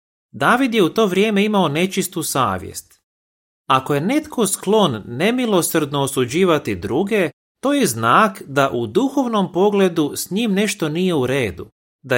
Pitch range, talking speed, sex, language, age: 125-200 Hz, 145 wpm, male, Croatian, 30-49